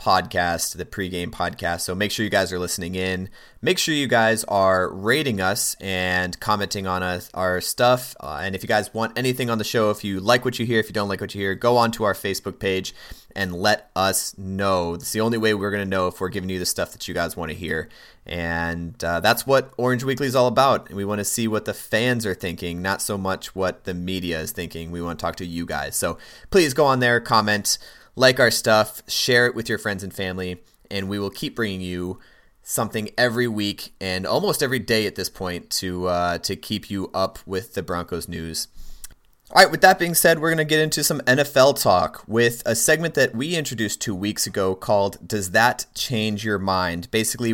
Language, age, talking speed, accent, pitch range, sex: English, 30-49, 230 wpm, American, 90-115 Hz, male